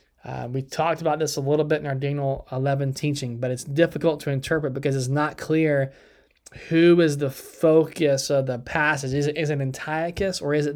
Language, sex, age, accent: English, male, 20-39, American